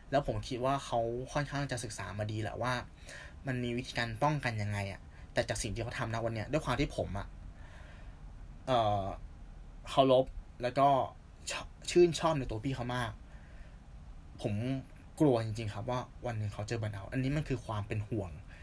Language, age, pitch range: Thai, 20-39, 90-125 Hz